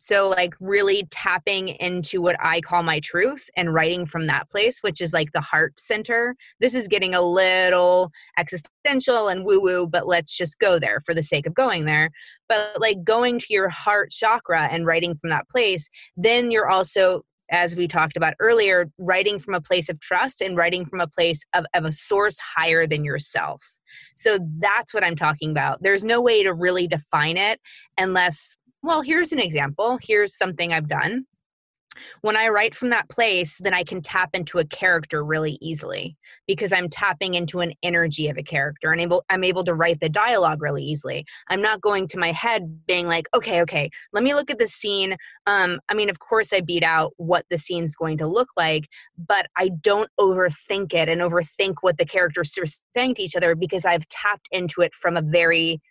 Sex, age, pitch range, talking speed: female, 20-39, 165-205 Hz, 200 wpm